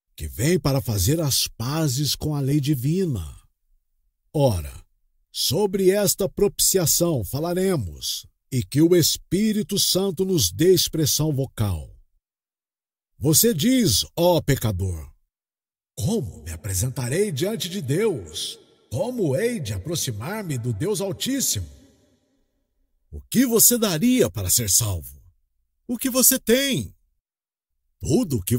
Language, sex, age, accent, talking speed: Portuguese, male, 60-79, Brazilian, 115 wpm